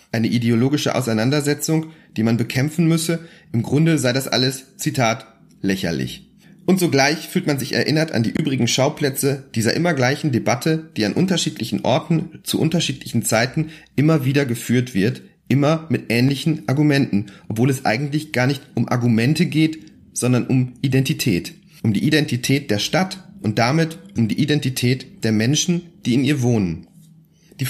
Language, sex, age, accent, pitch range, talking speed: German, male, 40-59, German, 125-160 Hz, 155 wpm